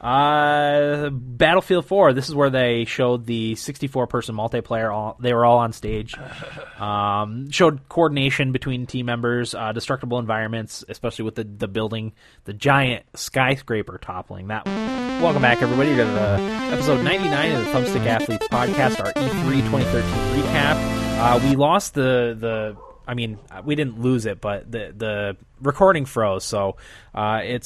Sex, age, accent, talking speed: male, 20-39, American, 155 wpm